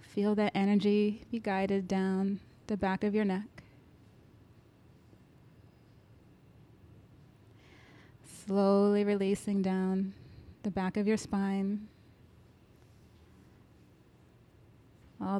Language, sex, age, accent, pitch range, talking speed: English, female, 30-49, American, 185-210 Hz, 80 wpm